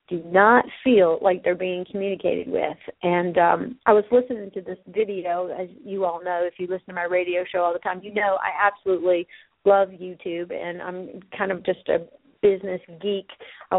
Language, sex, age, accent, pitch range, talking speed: English, female, 40-59, American, 175-200 Hz, 195 wpm